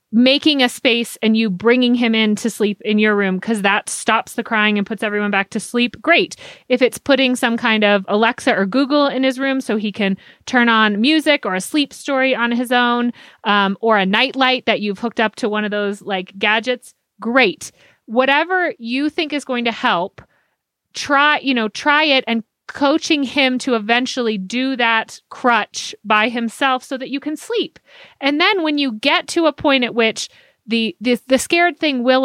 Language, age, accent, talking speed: English, 30-49, American, 200 wpm